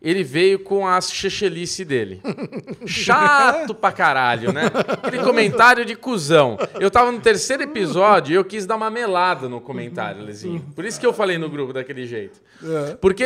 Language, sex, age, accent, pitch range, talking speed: Portuguese, male, 20-39, Brazilian, 160-230 Hz, 170 wpm